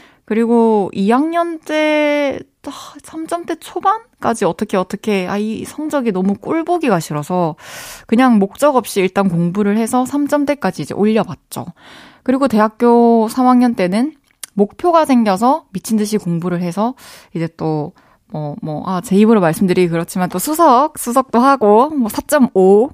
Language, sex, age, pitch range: Korean, female, 20-39, 185-275 Hz